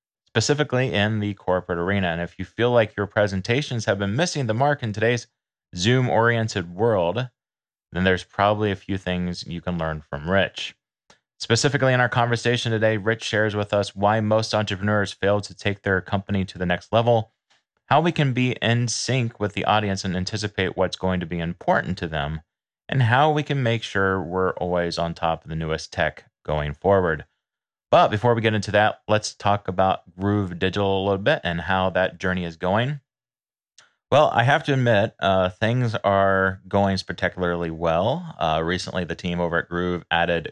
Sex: male